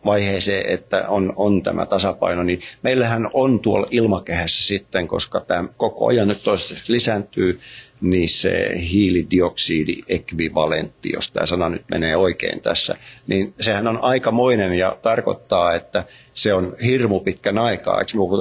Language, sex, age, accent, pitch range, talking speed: Finnish, male, 50-69, native, 90-115 Hz, 135 wpm